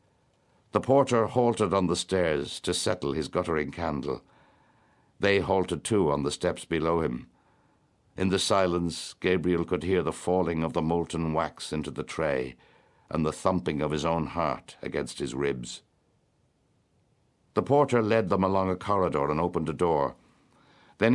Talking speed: 160 wpm